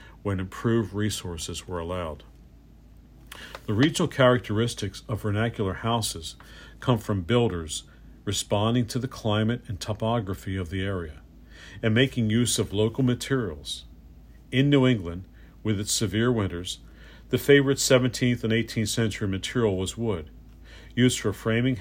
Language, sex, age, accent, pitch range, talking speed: English, male, 50-69, American, 90-115 Hz, 130 wpm